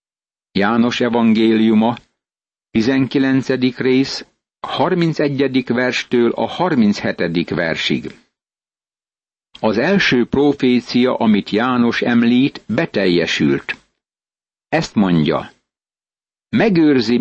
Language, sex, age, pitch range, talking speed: Hungarian, male, 60-79, 120-145 Hz, 65 wpm